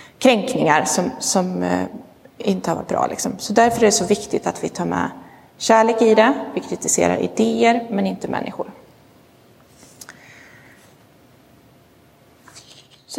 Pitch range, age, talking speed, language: 190-240 Hz, 30-49, 125 wpm, Swedish